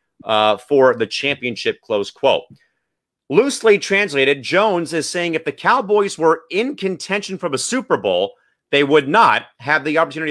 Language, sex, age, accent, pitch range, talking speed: English, male, 30-49, American, 130-160 Hz, 155 wpm